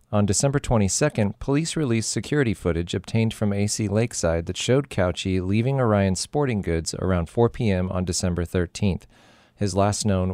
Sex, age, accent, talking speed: male, 40-59, American, 155 wpm